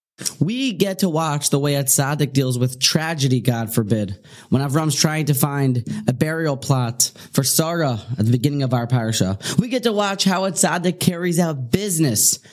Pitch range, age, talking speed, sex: 130-175 Hz, 20-39, 185 wpm, male